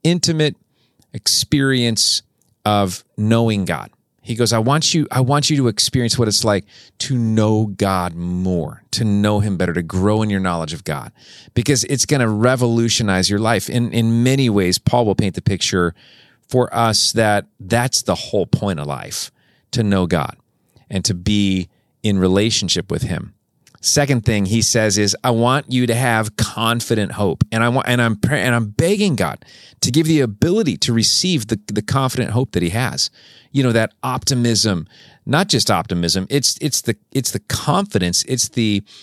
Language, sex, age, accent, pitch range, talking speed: English, male, 40-59, American, 105-130 Hz, 180 wpm